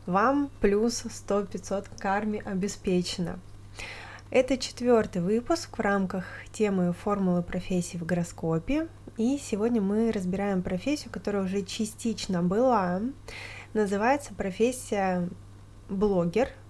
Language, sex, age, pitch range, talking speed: Russian, female, 20-39, 180-225 Hz, 95 wpm